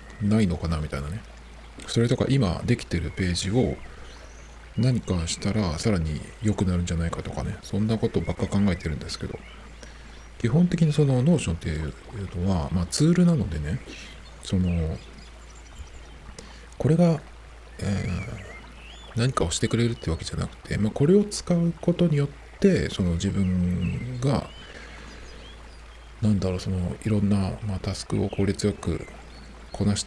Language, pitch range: Japanese, 70-110 Hz